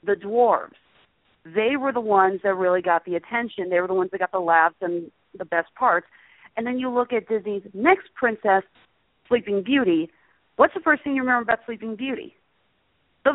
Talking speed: 195 wpm